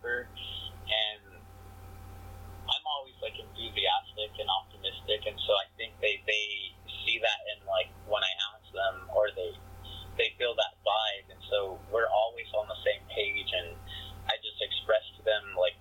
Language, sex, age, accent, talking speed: English, male, 30-49, American, 160 wpm